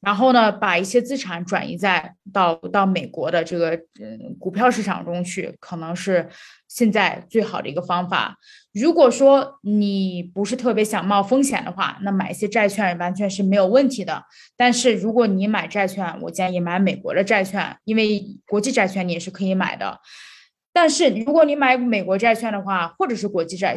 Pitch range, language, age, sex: 185-230 Hz, Chinese, 20-39, female